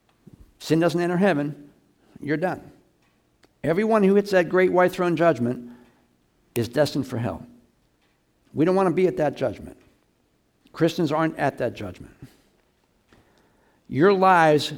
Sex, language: male, English